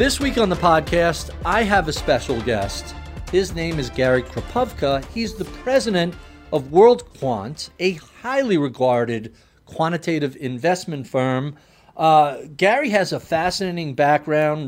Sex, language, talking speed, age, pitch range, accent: male, English, 130 wpm, 40-59, 130-170 Hz, American